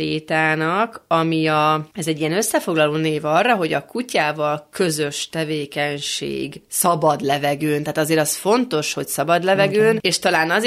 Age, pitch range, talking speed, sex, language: 30-49, 155-185 Hz, 145 wpm, female, Hungarian